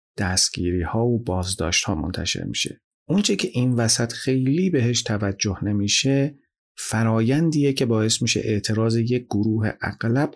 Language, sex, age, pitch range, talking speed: Persian, male, 40-59, 105-135 Hz, 135 wpm